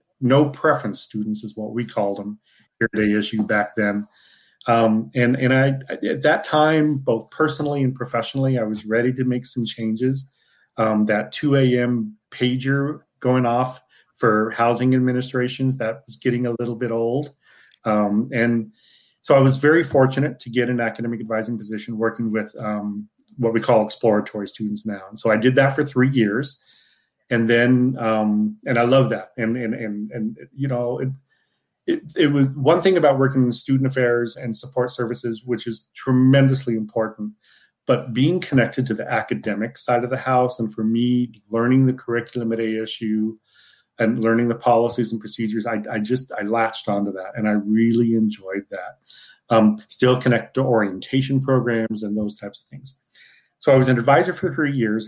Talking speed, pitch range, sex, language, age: 180 wpm, 110-130 Hz, male, English, 40-59